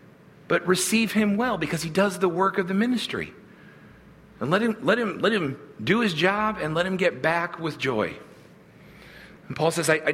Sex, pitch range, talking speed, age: male, 150-195 Hz, 200 wpm, 50-69